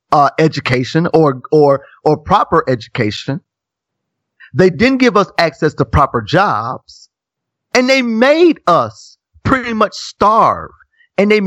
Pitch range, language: 135-210 Hz, English